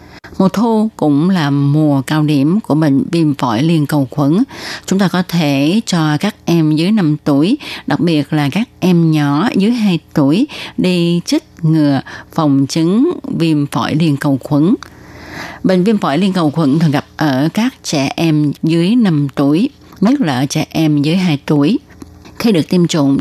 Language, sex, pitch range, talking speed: Vietnamese, female, 145-180 Hz, 180 wpm